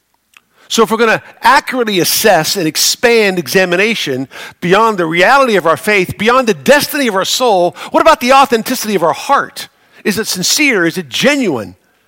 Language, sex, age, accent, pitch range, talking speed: English, male, 50-69, American, 160-225 Hz, 175 wpm